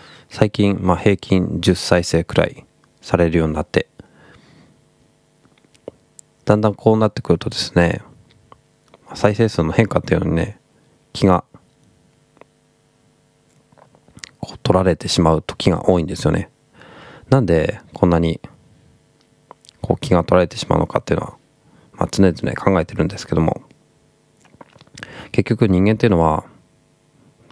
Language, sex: Japanese, male